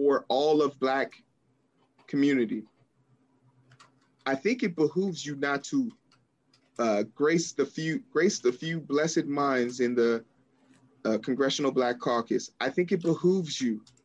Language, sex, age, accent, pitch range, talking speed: English, male, 30-49, American, 130-160 Hz, 135 wpm